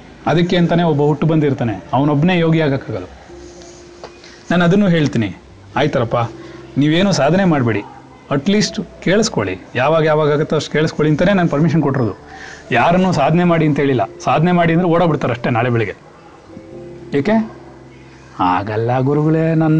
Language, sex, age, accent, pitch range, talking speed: Kannada, male, 30-49, native, 120-165 Hz, 120 wpm